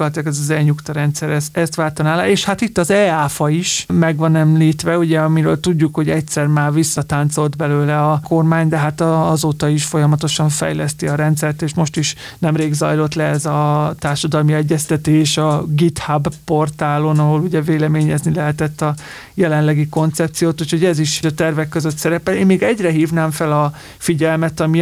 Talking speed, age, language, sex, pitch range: 165 wpm, 30-49, Hungarian, male, 150-165 Hz